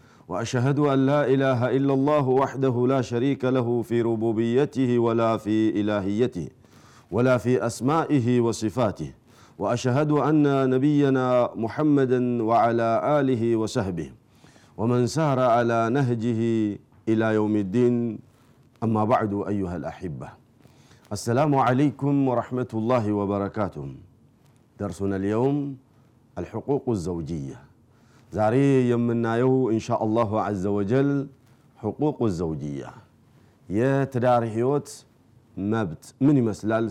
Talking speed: 100 wpm